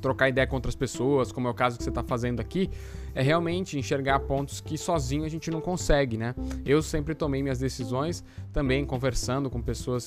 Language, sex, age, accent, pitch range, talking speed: Portuguese, male, 10-29, Brazilian, 120-145 Hz, 205 wpm